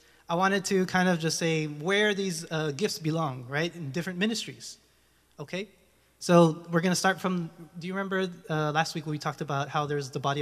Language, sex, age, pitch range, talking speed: English, male, 20-39, 145-170 Hz, 215 wpm